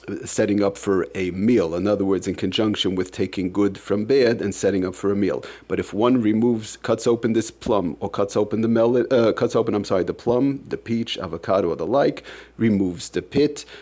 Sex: male